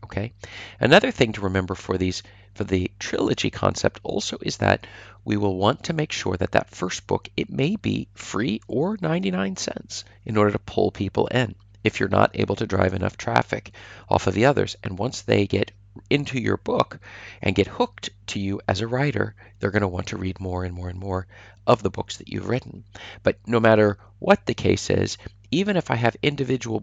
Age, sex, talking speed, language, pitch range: 40-59, male, 205 wpm, English, 100-110 Hz